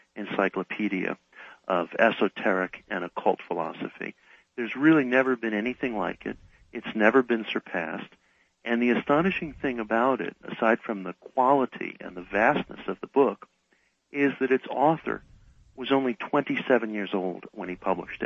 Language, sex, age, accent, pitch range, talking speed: English, male, 60-79, American, 100-135 Hz, 150 wpm